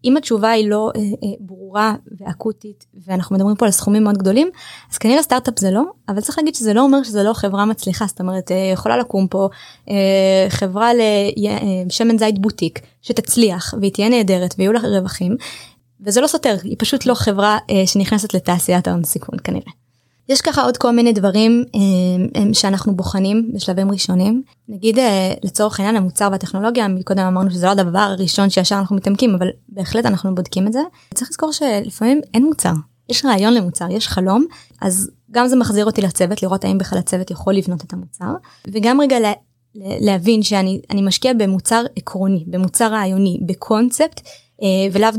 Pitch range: 190-225 Hz